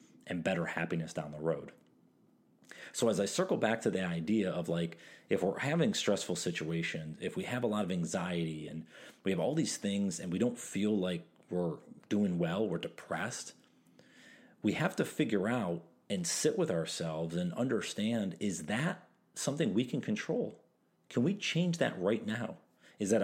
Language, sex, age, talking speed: English, male, 40-59, 180 wpm